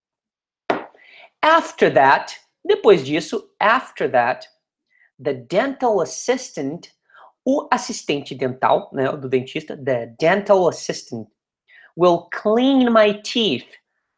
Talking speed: 95 wpm